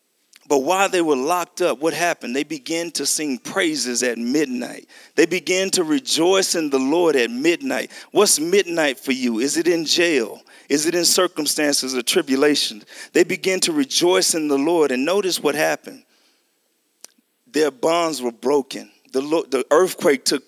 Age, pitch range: 40-59, 145-215 Hz